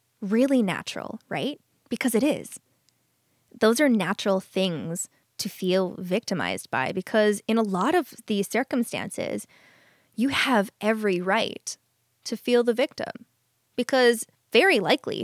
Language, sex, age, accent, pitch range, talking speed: English, female, 10-29, American, 190-245 Hz, 125 wpm